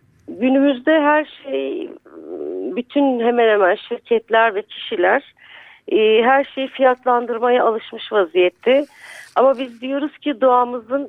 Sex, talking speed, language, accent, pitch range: female, 110 wpm, Turkish, native, 220-290 Hz